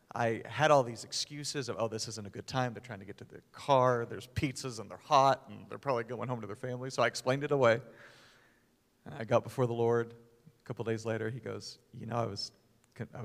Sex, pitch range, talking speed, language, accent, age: male, 115-150 Hz, 240 wpm, English, American, 40-59